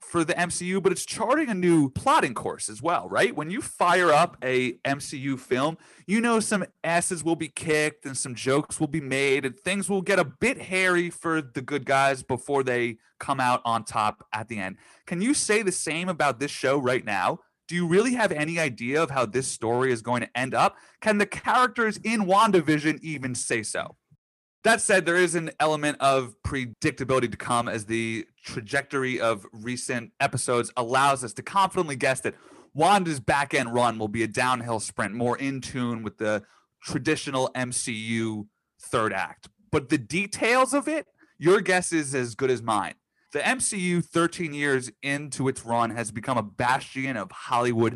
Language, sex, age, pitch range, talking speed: English, male, 30-49, 125-175 Hz, 190 wpm